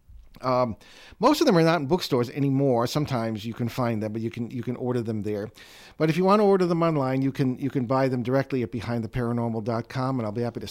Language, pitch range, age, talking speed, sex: English, 115-140 Hz, 50-69, 245 wpm, male